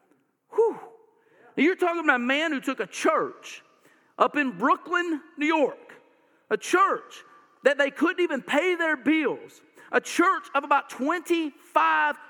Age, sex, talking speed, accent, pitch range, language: 50-69, male, 145 wpm, American, 245-340 Hz, English